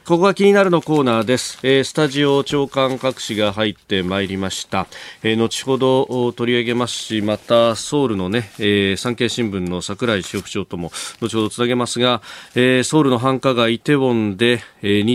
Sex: male